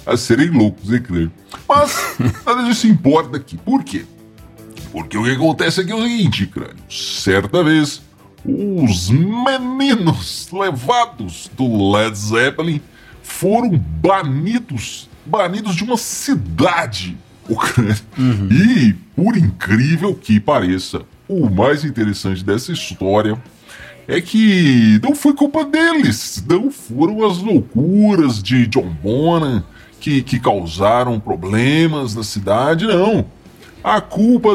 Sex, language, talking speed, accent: female, Portuguese, 120 wpm, Brazilian